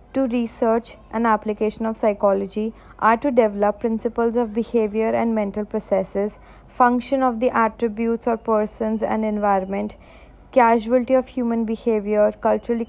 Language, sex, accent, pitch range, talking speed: English, female, Indian, 205-230 Hz, 130 wpm